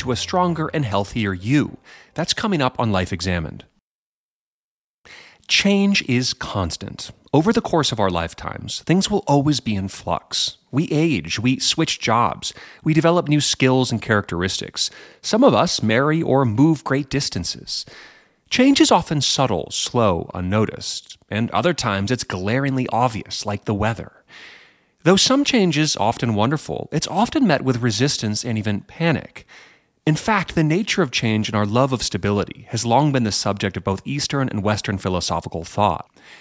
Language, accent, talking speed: English, American, 160 wpm